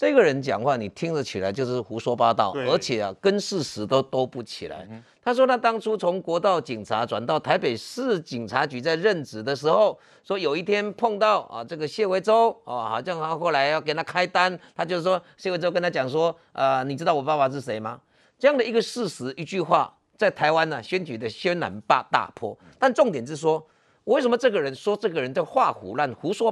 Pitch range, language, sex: 155-235 Hz, Chinese, male